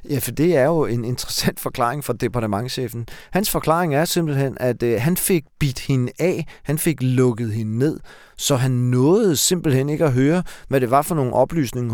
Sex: male